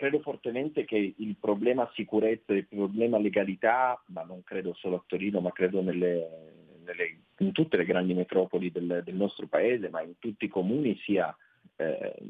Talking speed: 175 wpm